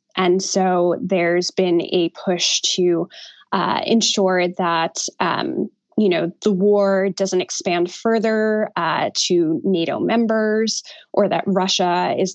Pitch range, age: 185-220 Hz, 20-39